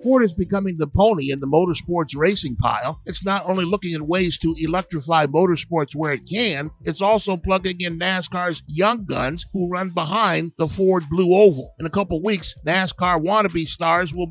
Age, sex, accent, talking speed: 50-69, male, American, 185 wpm